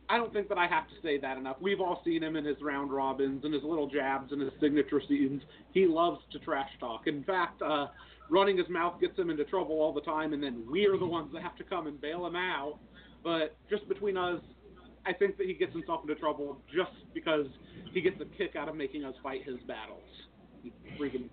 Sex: male